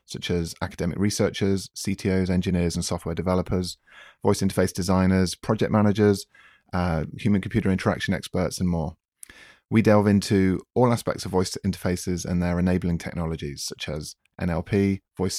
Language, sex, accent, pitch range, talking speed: English, male, British, 90-105 Hz, 140 wpm